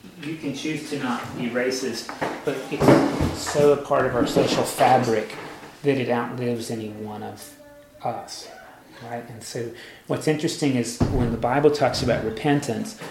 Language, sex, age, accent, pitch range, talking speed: English, male, 30-49, American, 115-140 Hz, 160 wpm